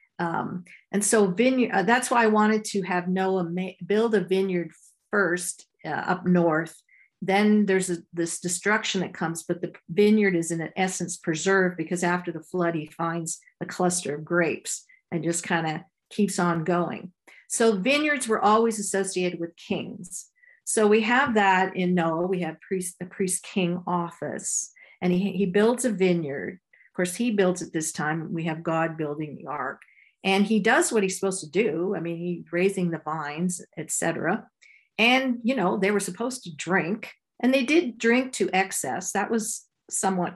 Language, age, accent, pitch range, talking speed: English, 50-69, American, 175-210 Hz, 185 wpm